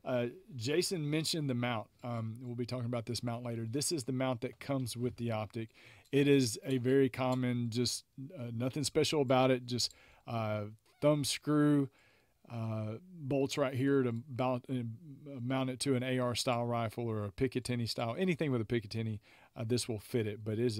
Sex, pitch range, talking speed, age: male, 120-145 Hz, 195 wpm, 40-59